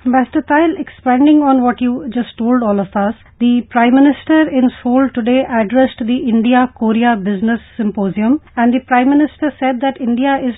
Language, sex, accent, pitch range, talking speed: English, female, Indian, 235-270 Hz, 170 wpm